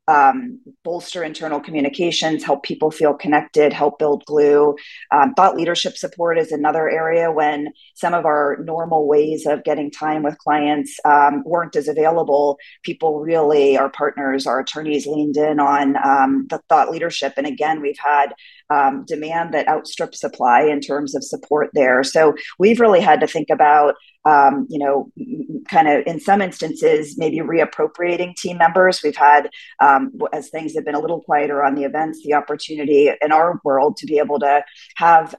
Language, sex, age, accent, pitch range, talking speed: English, female, 40-59, American, 145-170 Hz, 175 wpm